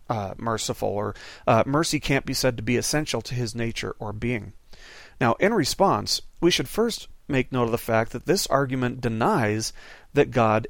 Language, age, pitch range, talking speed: English, 40-59, 110-145 Hz, 185 wpm